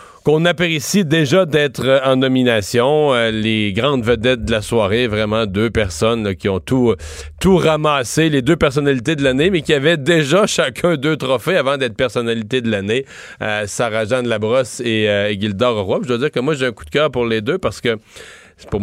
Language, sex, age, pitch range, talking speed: French, male, 40-59, 110-140 Hz, 200 wpm